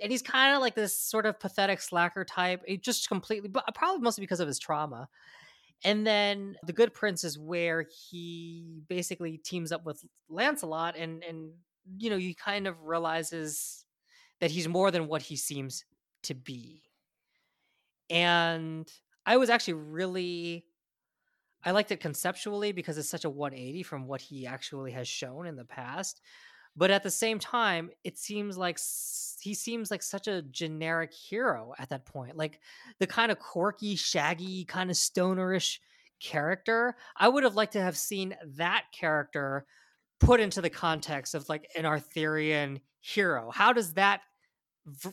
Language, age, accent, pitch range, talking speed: English, 20-39, American, 155-200 Hz, 165 wpm